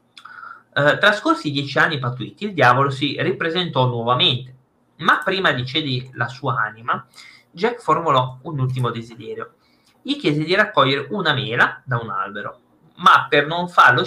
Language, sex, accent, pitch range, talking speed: Italian, male, native, 125-165 Hz, 145 wpm